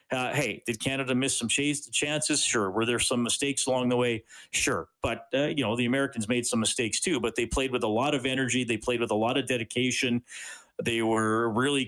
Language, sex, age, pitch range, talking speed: English, male, 40-59, 110-155 Hz, 235 wpm